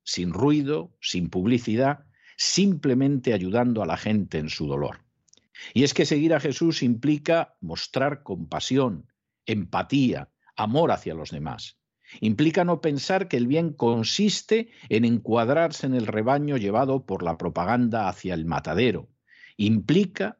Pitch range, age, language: 105-145 Hz, 60-79, Spanish